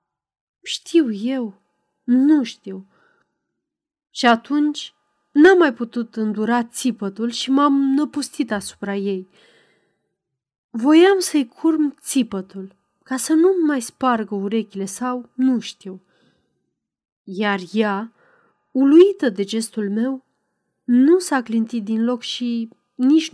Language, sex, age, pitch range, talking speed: Romanian, female, 30-49, 200-285 Hz, 110 wpm